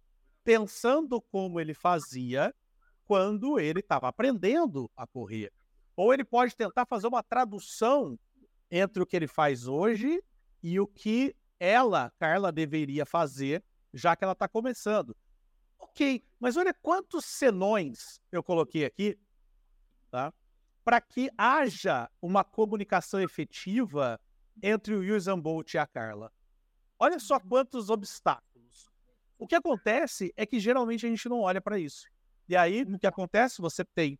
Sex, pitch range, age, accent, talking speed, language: male, 170-260 Hz, 50-69, Brazilian, 140 wpm, Portuguese